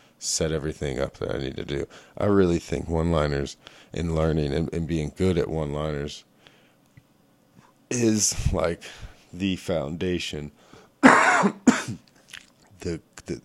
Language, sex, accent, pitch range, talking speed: English, male, American, 75-90 Hz, 115 wpm